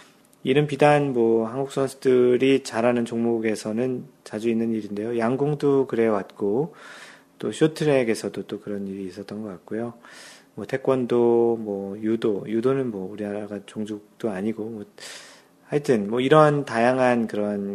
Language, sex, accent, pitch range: Korean, male, native, 105-125 Hz